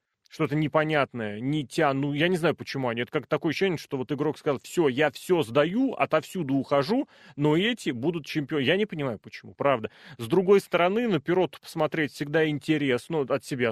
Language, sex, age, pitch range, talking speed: Russian, male, 30-49, 135-160 Hz, 190 wpm